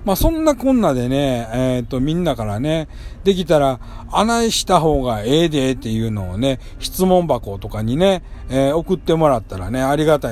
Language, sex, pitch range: Japanese, male, 115-170 Hz